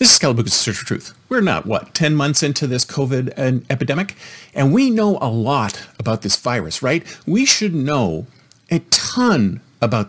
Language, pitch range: English, 135-210 Hz